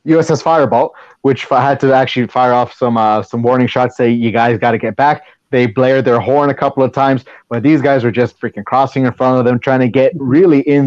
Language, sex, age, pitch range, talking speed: English, male, 30-49, 125-150 Hz, 250 wpm